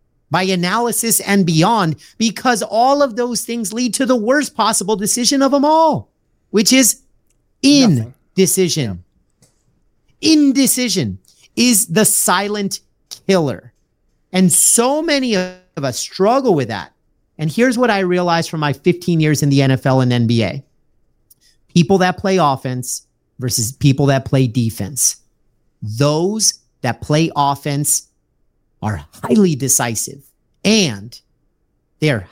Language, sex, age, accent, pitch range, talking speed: English, male, 40-59, American, 140-220 Hz, 125 wpm